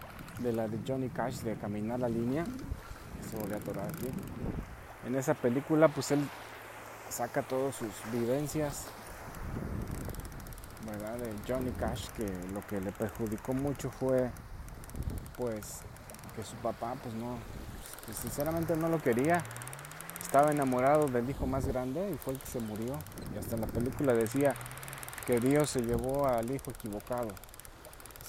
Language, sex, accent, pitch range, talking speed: English, male, Mexican, 115-140 Hz, 150 wpm